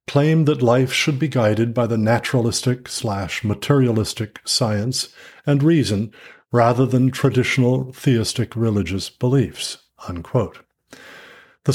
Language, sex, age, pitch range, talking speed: English, male, 50-69, 115-140 Hz, 90 wpm